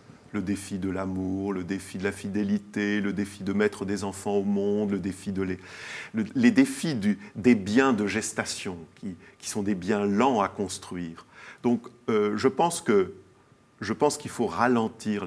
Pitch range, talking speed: 100-135 Hz, 185 wpm